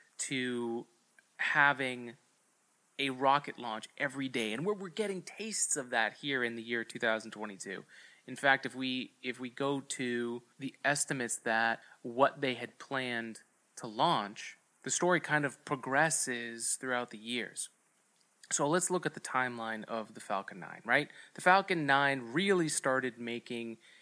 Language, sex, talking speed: English, male, 150 wpm